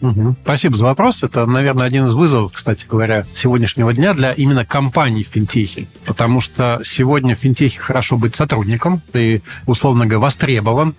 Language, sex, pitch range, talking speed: Russian, male, 115-145 Hz, 155 wpm